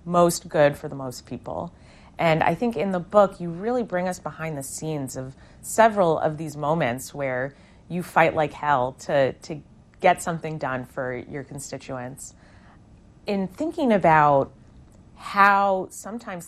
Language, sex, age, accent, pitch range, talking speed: English, female, 30-49, American, 145-185 Hz, 155 wpm